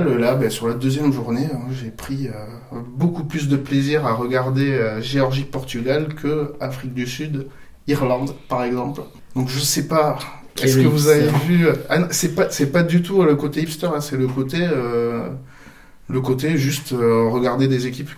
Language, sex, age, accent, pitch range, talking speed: French, male, 20-39, French, 120-140 Hz, 190 wpm